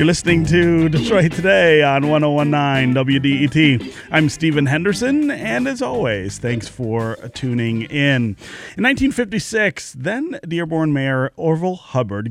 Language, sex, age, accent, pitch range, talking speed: English, male, 30-49, American, 115-160 Hz, 115 wpm